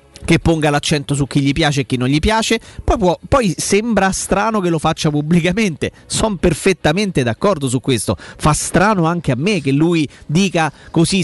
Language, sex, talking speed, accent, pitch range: Italian, male, 185 wpm, native, 140-175 Hz